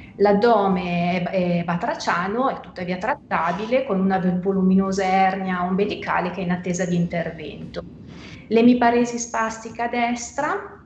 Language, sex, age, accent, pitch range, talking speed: Italian, female, 30-49, native, 185-220 Hz, 115 wpm